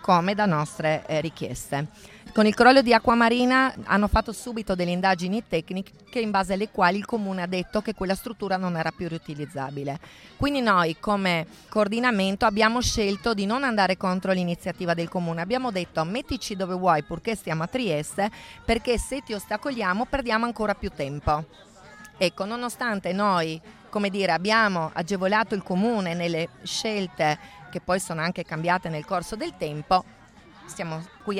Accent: native